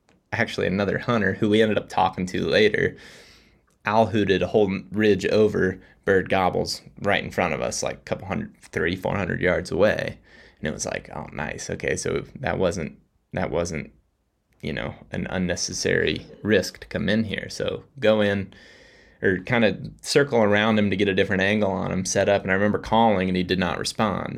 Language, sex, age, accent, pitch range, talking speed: English, male, 20-39, American, 90-105 Hz, 195 wpm